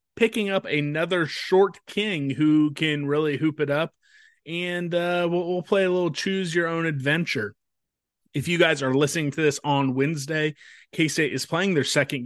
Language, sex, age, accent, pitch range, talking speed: English, male, 30-49, American, 135-175 Hz, 180 wpm